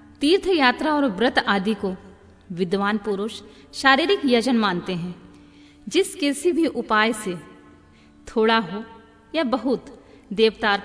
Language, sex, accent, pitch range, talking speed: Hindi, female, native, 190-245 Hz, 110 wpm